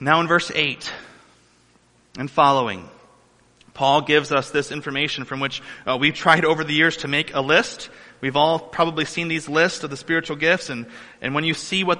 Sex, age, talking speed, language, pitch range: male, 30-49, 195 wpm, English, 125-155 Hz